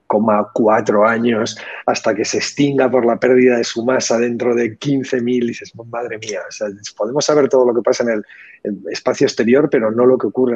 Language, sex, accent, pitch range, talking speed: Spanish, male, Spanish, 105-130 Hz, 210 wpm